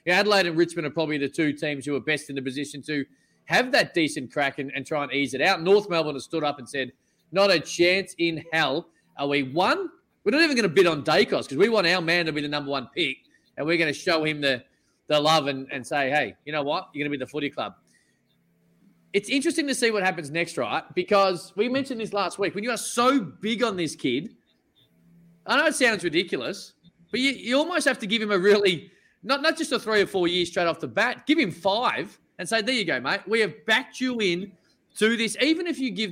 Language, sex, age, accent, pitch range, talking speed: English, male, 20-39, Australian, 150-210 Hz, 255 wpm